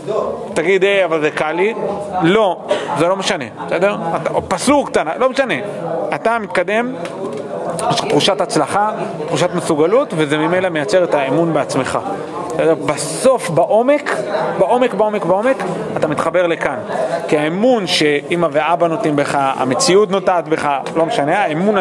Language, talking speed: Hebrew, 125 wpm